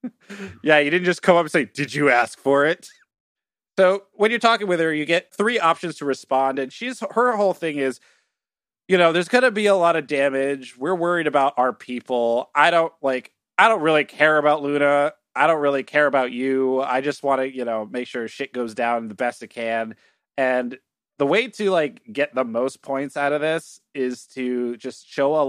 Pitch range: 130-170 Hz